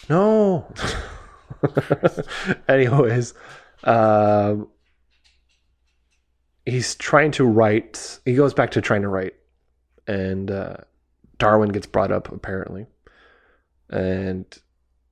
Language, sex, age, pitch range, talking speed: English, male, 20-39, 90-110 Hz, 85 wpm